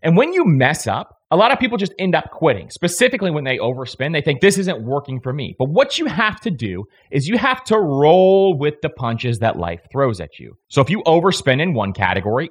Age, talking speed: 30-49, 240 wpm